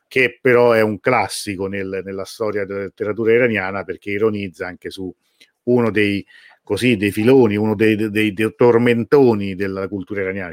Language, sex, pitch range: Italian, male, 95-120 Hz